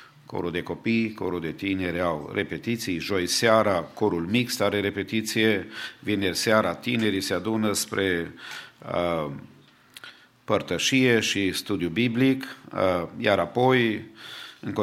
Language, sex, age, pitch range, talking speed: English, male, 50-69, 95-115 Hz, 115 wpm